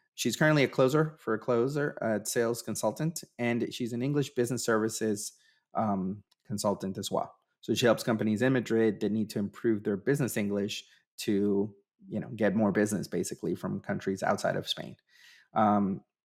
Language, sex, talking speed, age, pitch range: English, male, 170 wpm, 30-49, 110-125 Hz